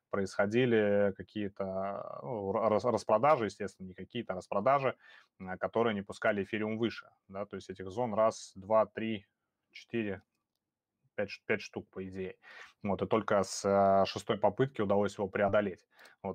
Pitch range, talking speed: 100-115 Hz, 120 wpm